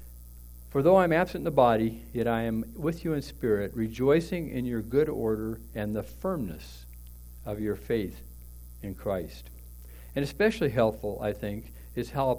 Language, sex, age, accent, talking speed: English, male, 60-79, American, 170 wpm